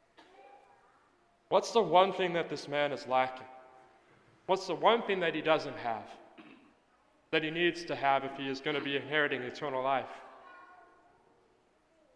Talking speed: 155 wpm